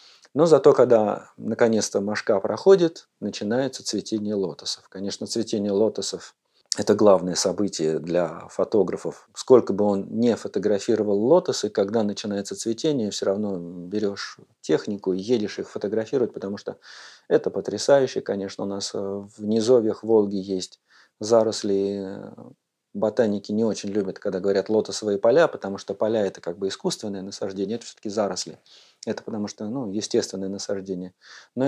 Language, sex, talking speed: Russian, male, 140 wpm